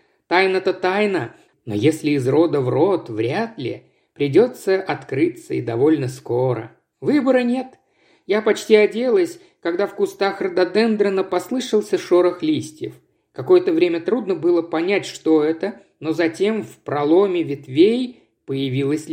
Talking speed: 125 wpm